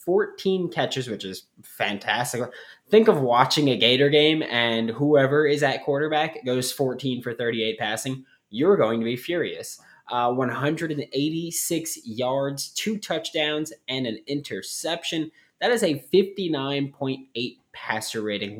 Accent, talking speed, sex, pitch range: American, 130 wpm, male, 110-150 Hz